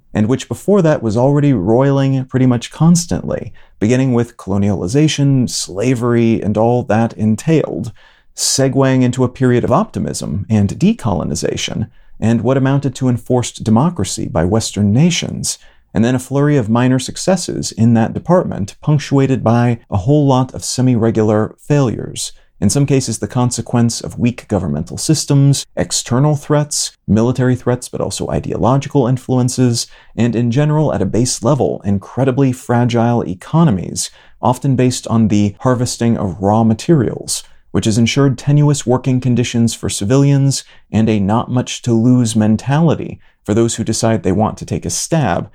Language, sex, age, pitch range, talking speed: English, male, 40-59, 110-135 Hz, 145 wpm